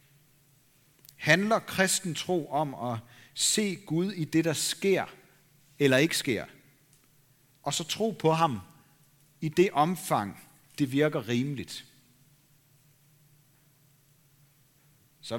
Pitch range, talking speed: 130-155 Hz, 100 wpm